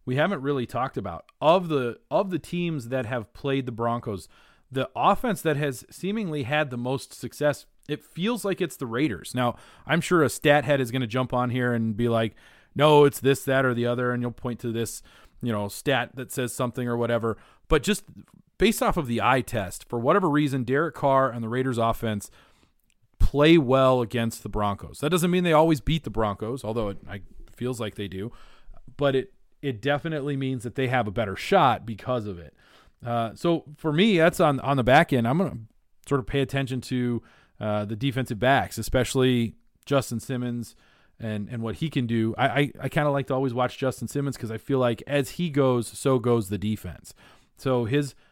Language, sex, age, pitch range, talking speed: English, male, 30-49, 115-145 Hz, 210 wpm